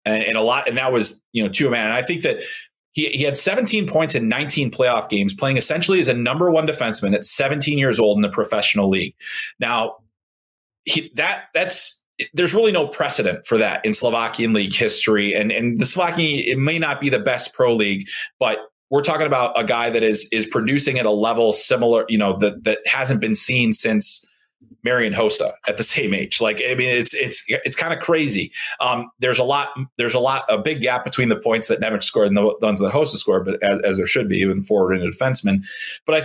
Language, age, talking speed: English, 30-49, 230 wpm